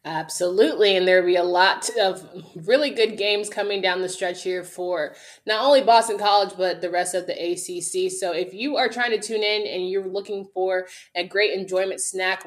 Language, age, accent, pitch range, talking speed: English, 20-39, American, 185-230 Hz, 205 wpm